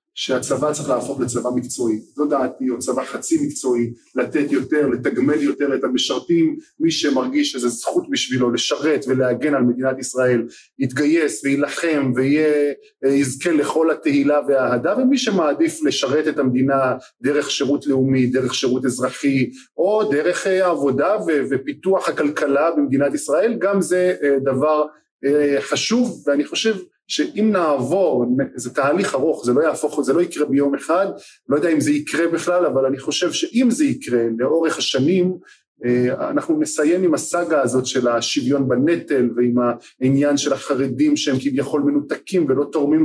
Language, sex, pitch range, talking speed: Hebrew, male, 130-175 Hz, 140 wpm